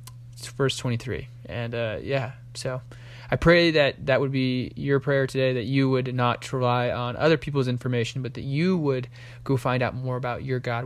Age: 20-39